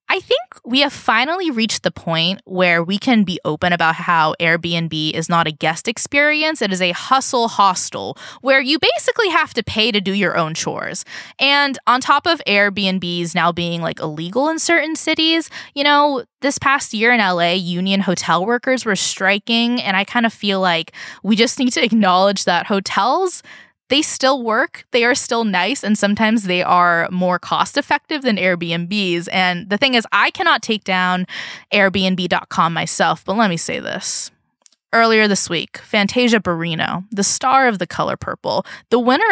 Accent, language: American, English